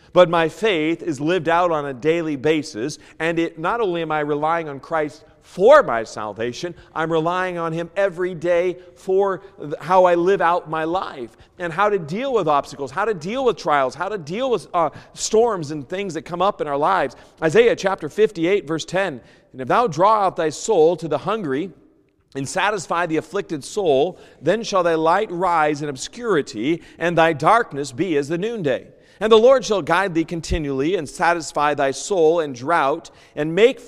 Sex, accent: male, American